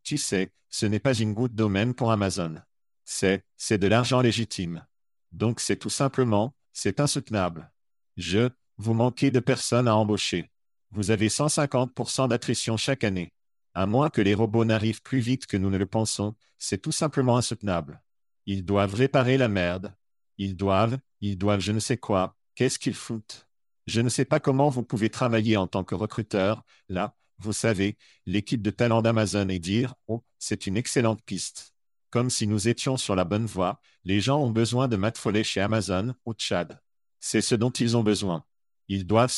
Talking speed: 185 wpm